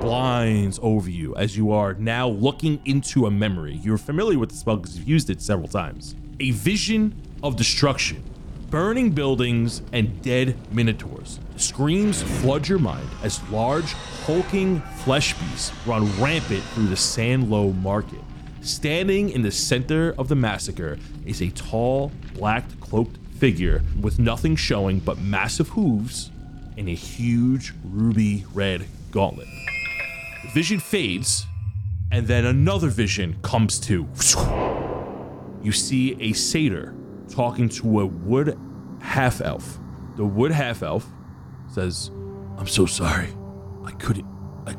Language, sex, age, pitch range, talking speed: English, male, 30-49, 100-130 Hz, 135 wpm